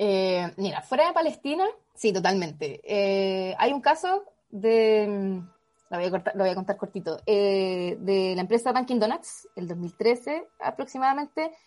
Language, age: Spanish, 20-39